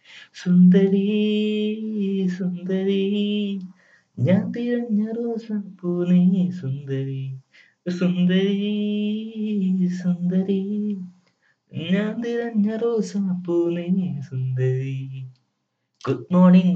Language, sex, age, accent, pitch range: Malayalam, male, 20-39, native, 115-180 Hz